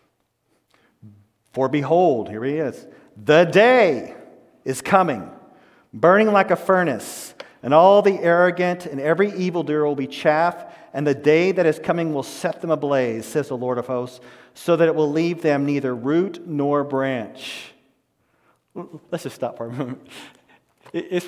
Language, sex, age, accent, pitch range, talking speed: English, male, 40-59, American, 150-200 Hz, 155 wpm